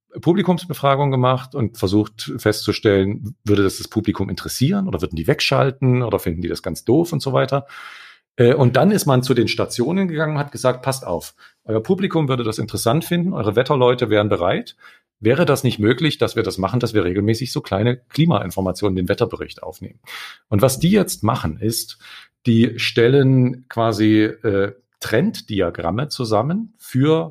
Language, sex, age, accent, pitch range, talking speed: German, male, 40-59, German, 105-140 Hz, 165 wpm